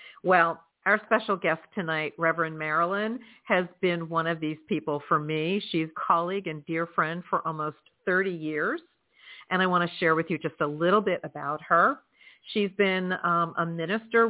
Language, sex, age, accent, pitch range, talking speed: English, female, 50-69, American, 165-215 Hz, 175 wpm